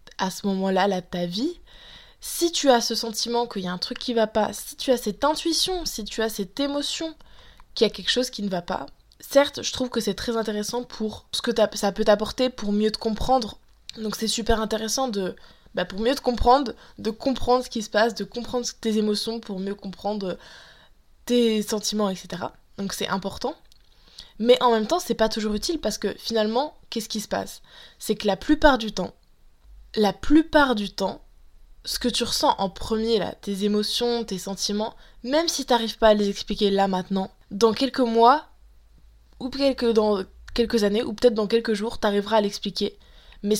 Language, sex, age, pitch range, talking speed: French, female, 20-39, 200-240 Hz, 205 wpm